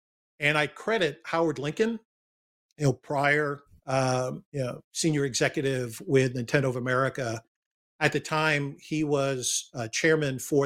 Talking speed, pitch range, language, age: 140 wpm, 130-155 Hz, English, 50-69